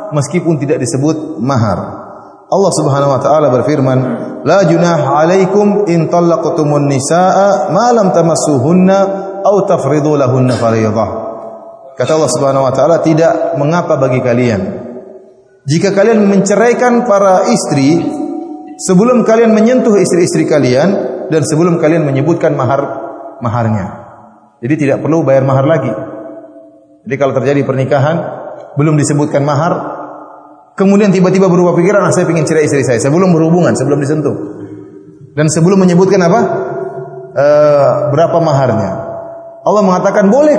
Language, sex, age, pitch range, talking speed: Indonesian, male, 30-49, 140-205 Hz, 105 wpm